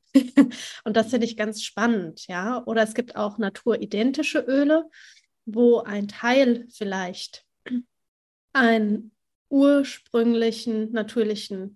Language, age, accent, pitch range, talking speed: German, 30-49, German, 210-245 Hz, 100 wpm